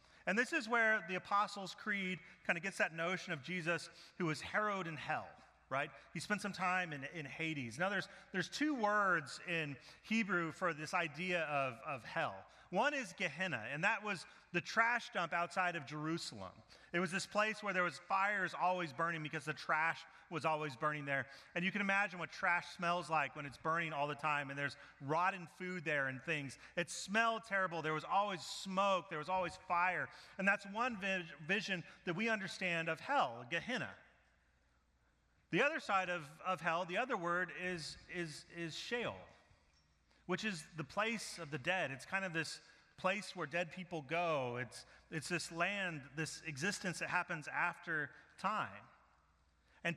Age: 30-49